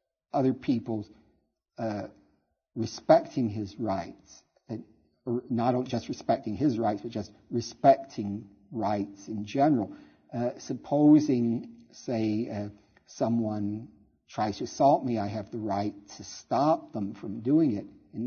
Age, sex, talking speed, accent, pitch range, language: 50-69, male, 125 wpm, American, 105-125 Hz, English